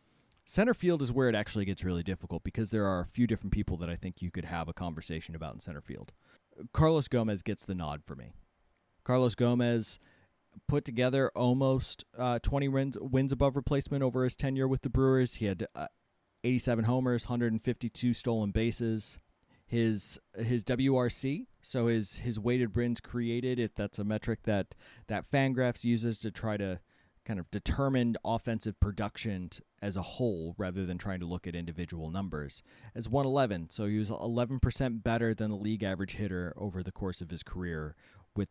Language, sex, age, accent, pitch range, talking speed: English, male, 30-49, American, 90-125 Hz, 190 wpm